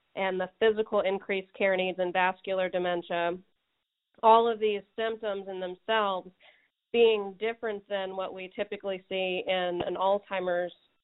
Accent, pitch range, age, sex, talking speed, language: American, 185-205 Hz, 40-59, female, 135 wpm, English